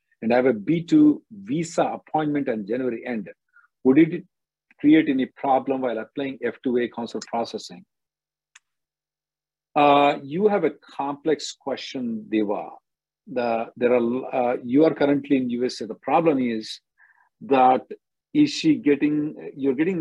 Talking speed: 135 wpm